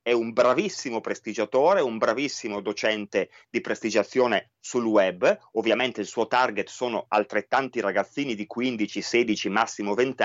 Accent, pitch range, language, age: native, 115-175 Hz, Italian, 30-49